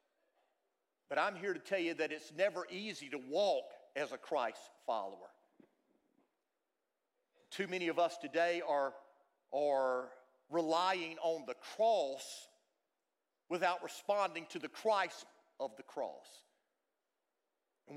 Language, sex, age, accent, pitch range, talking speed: English, male, 50-69, American, 165-200 Hz, 120 wpm